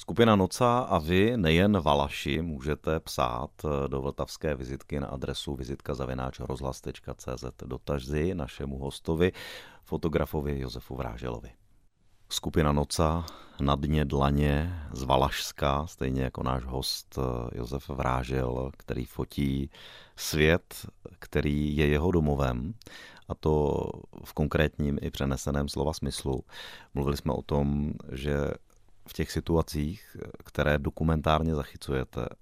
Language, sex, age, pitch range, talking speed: Czech, male, 30-49, 70-85 Hz, 110 wpm